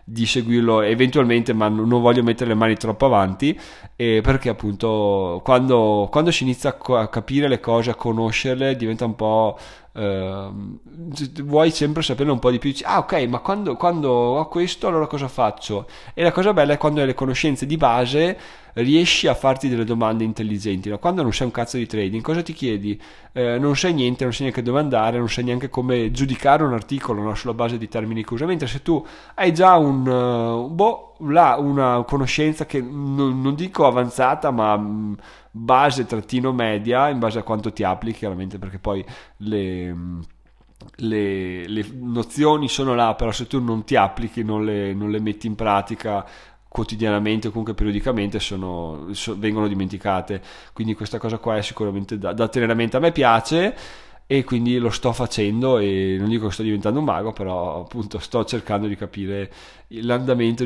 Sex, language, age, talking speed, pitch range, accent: male, Italian, 20-39, 180 wpm, 105-135 Hz, native